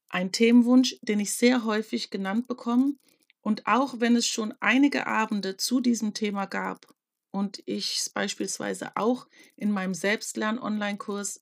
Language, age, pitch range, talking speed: German, 40-59, 205-250 Hz, 140 wpm